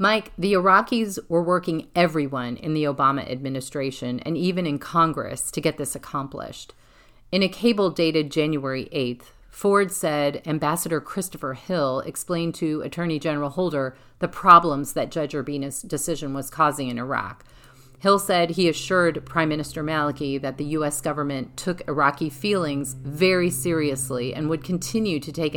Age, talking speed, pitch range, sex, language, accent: 40-59, 155 wpm, 140-175 Hz, female, English, American